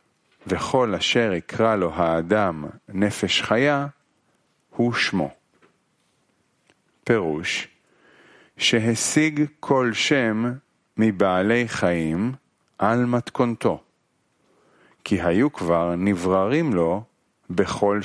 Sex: male